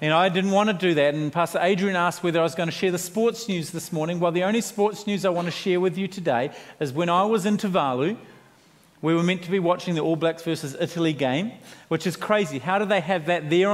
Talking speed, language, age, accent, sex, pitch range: 265 wpm, English, 40-59, Australian, male, 170-225 Hz